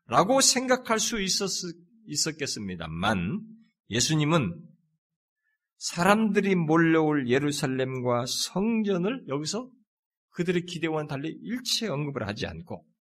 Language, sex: Korean, male